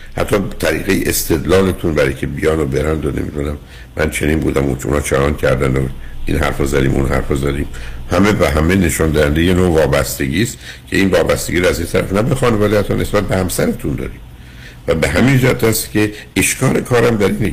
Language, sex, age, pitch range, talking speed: Persian, male, 60-79, 65-105 Hz, 185 wpm